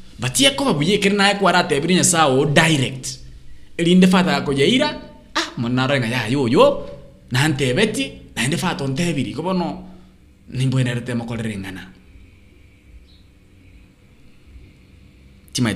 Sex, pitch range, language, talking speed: male, 95-150 Hz, English, 120 wpm